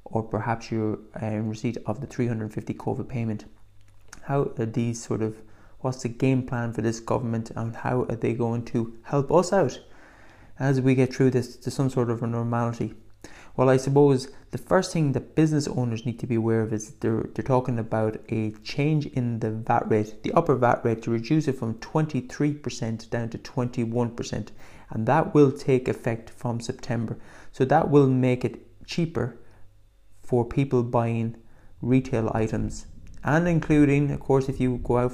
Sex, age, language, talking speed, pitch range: male, 20-39, English, 180 wpm, 110-130 Hz